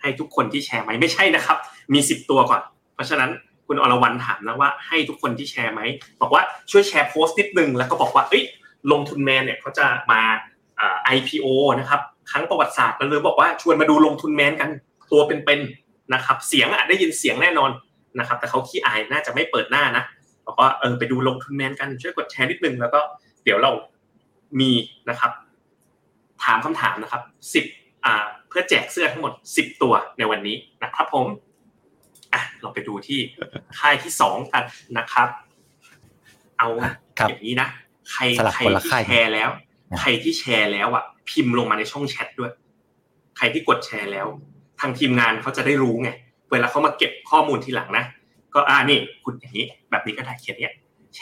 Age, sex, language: 20-39, male, Thai